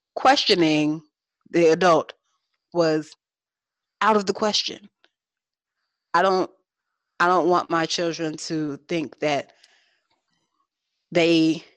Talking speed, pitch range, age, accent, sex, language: 95 wpm, 170-260 Hz, 30-49, American, female, English